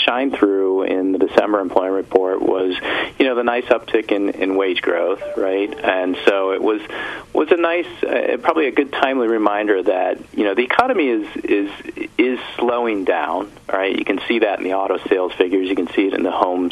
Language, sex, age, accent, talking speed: English, male, 40-59, American, 210 wpm